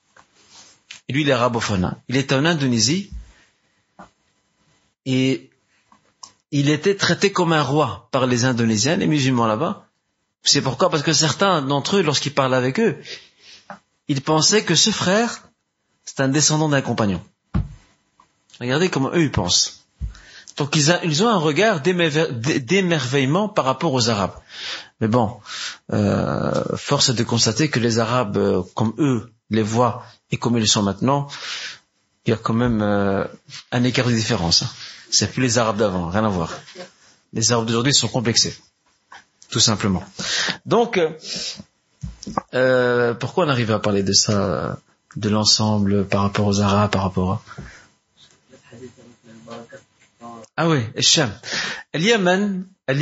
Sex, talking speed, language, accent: male, 140 wpm, French, French